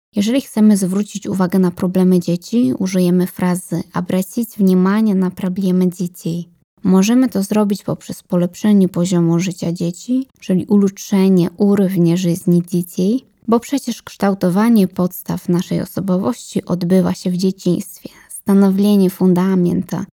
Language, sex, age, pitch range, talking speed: Polish, female, 20-39, 185-215 Hz, 115 wpm